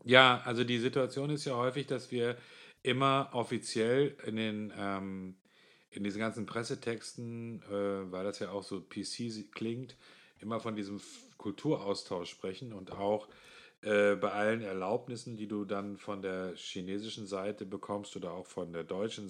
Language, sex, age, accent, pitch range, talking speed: German, male, 40-59, German, 100-125 Hz, 155 wpm